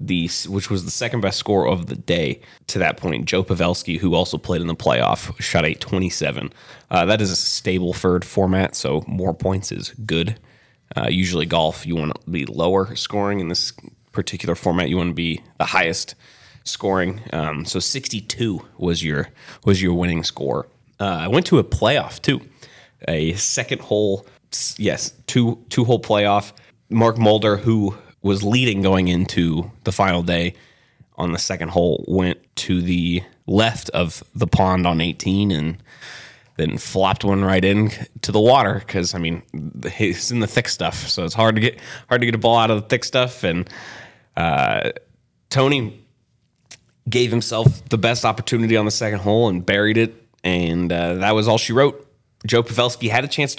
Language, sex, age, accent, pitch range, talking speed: English, male, 20-39, American, 90-120 Hz, 180 wpm